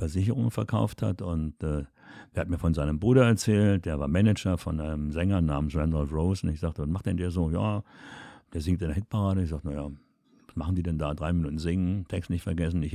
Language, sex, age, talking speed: German, male, 60-79, 235 wpm